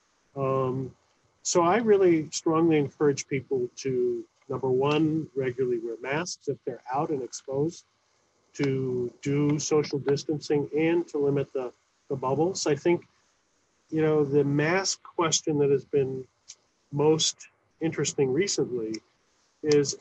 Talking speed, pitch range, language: 125 wpm, 135-180 Hz, English